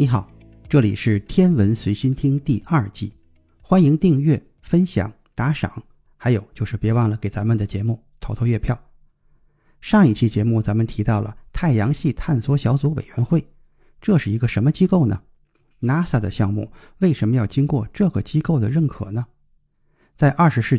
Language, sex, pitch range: Chinese, male, 110-150 Hz